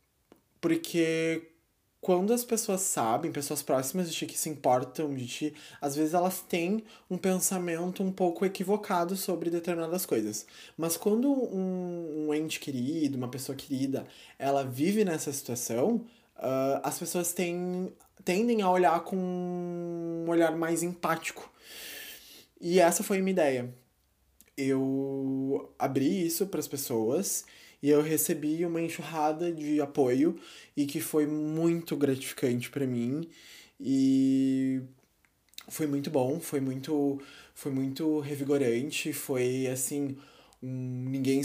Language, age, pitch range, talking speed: Portuguese, 20-39, 135-170 Hz, 125 wpm